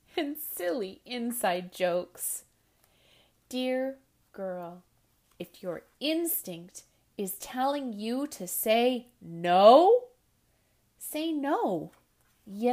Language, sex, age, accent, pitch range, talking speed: English, female, 30-49, American, 190-285 Hz, 85 wpm